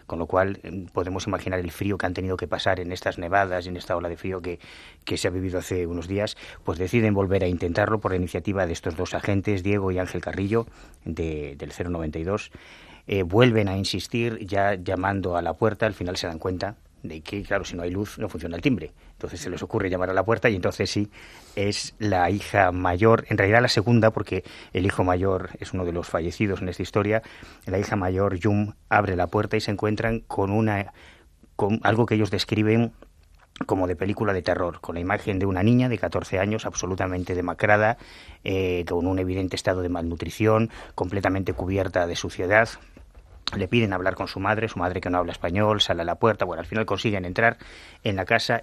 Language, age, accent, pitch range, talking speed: English, 30-49, Spanish, 90-110 Hz, 210 wpm